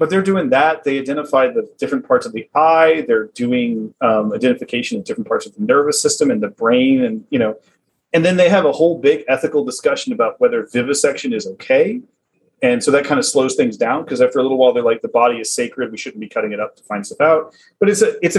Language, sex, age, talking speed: English, male, 30-49, 250 wpm